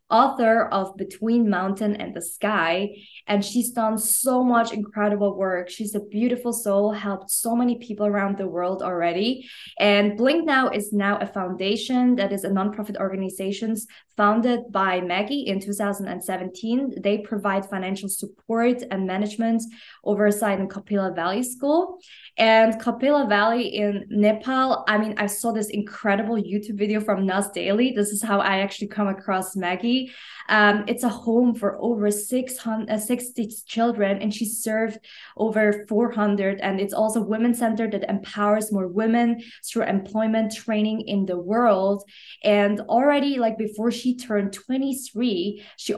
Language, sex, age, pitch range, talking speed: English, female, 20-39, 195-230 Hz, 155 wpm